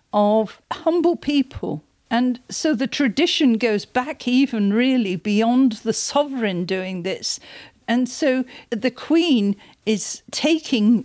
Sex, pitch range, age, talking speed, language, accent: female, 210-260 Hz, 50-69, 120 wpm, English, British